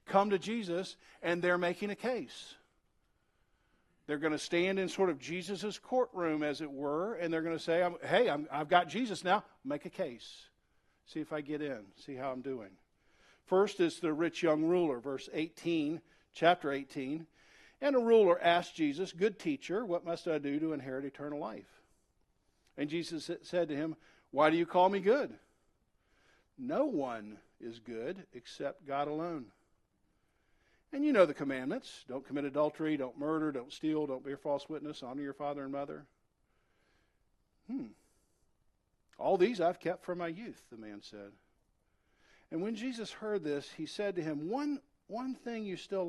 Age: 50-69